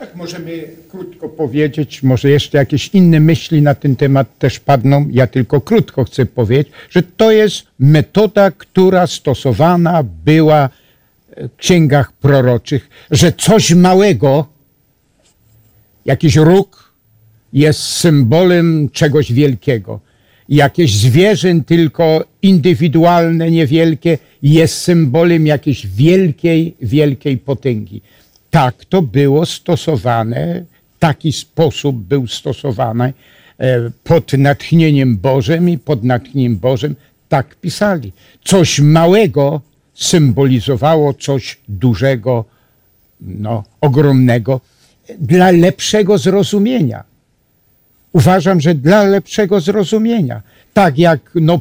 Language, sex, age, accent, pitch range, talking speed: Polish, male, 60-79, native, 130-170 Hz, 100 wpm